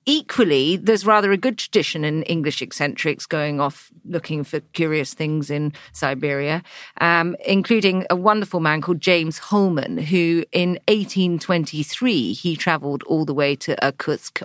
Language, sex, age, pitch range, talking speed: English, female, 40-59, 150-200 Hz, 145 wpm